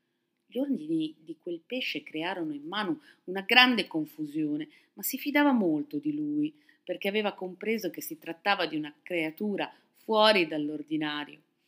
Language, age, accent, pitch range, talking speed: Italian, 30-49, native, 160-220 Hz, 145 wpm